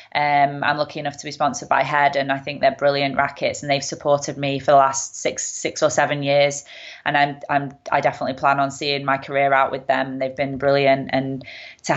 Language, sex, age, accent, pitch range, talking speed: English, female, 20-39, British, 135-145 Hz, 225 wpm